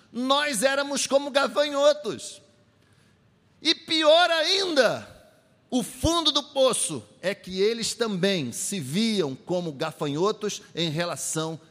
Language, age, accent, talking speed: Portuguese, 50-69, Brazilian, 110 wpm